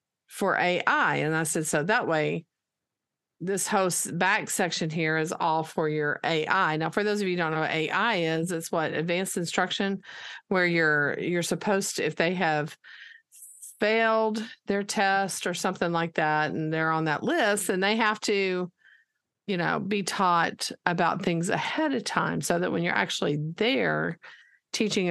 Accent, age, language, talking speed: American, 50-69, English, 170 wpm